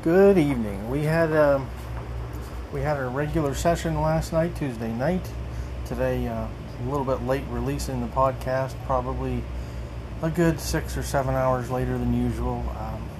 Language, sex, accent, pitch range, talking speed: English, male, American, 110-140 Hz, 155 wpm